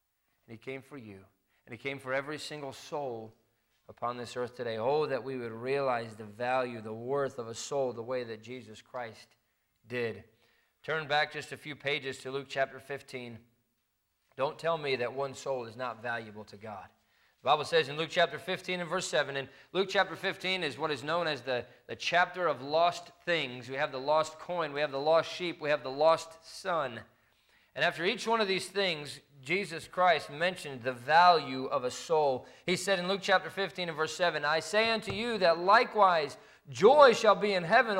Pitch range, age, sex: 130-195 Hz, 20-39, male